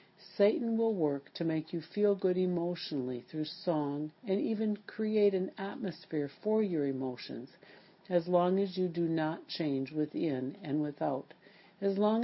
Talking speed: 150 wpm